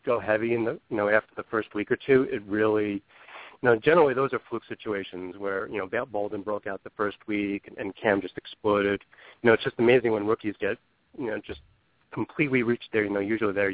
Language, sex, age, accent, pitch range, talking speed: English, male, 40-59, American, 105-125 Hz, 235 wpm